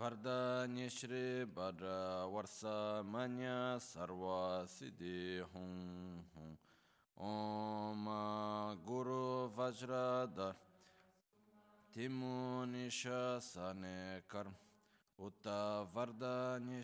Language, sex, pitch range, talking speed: Italian, male, 95-125 Hz, 55 wpm